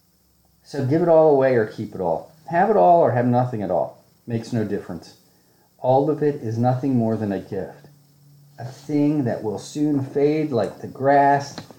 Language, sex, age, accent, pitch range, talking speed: English, male, 40-59, American, 110-145 Hz, 195 wpm